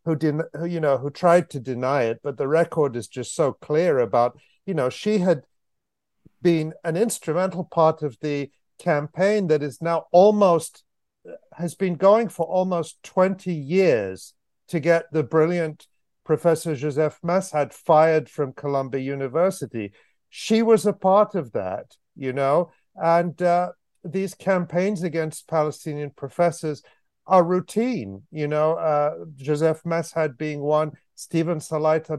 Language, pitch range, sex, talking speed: English, 140-170 Hz, male, 145 wpm